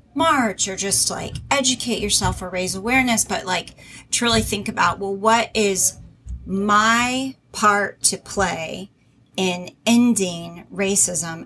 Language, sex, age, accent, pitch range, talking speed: English, female, 30-49, American, 185-220 Hz, 125 wpm